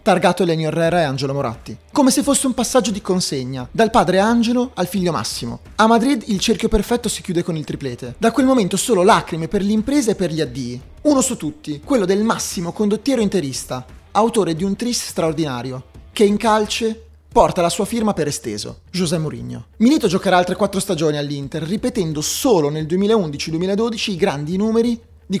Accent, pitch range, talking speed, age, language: native, 150-220 Hz, 185 wpm, 30-49, Italian